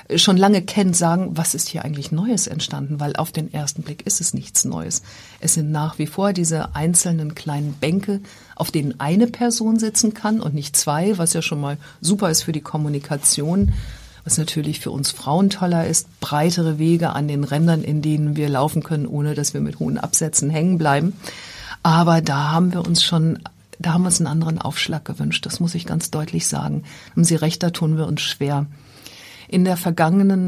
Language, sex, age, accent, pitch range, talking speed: German, female, 50-69, German, 150-175 Hz, 200 wpm